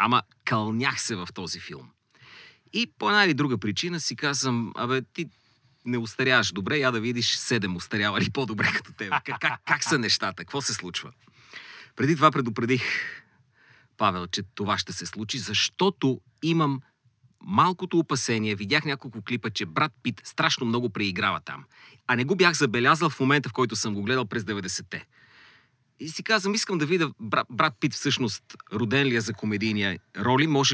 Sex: male